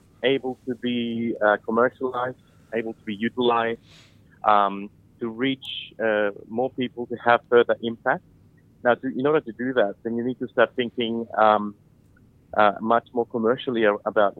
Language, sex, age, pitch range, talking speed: English, male, 30-49, 105-120 Hz, 160 wpm